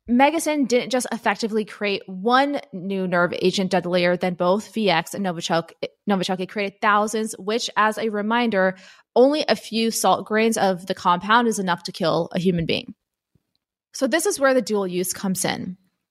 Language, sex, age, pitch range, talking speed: English, female, 20-39, 190-235 Hz, 170 wpm